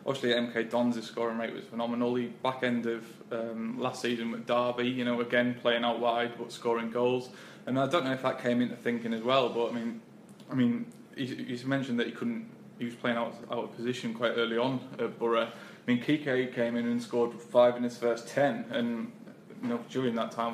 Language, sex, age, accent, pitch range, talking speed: English, male, 20-39, British, 115-125 Hz, 220 wpm